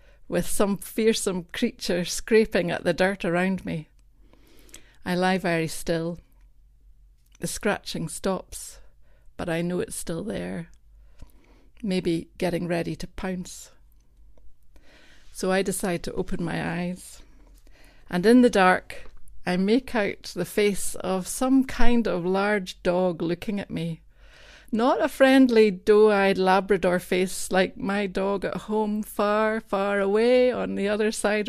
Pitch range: 175-210 Hz